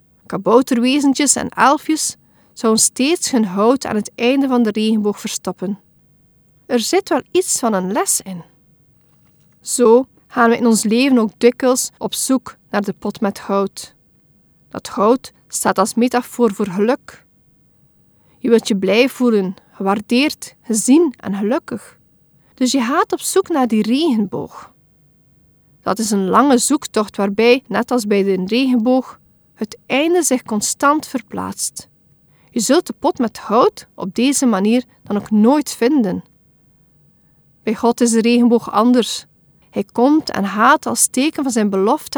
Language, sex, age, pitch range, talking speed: Dutch, female, 40-59, 215-270 Hz, 150 wpm